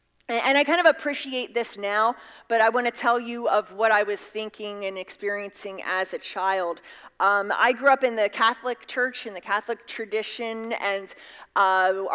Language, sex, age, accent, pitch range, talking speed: English, female, 30-49, American, 195-260 Hz, 185 wpm